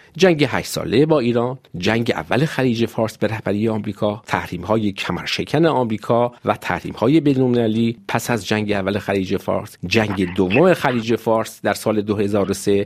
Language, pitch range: Persian, 100-135 Hz